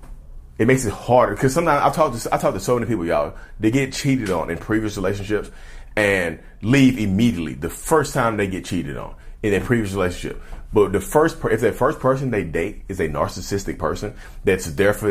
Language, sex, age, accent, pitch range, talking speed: English, male, 30-49, American, 80-115 Hz, 210 wpm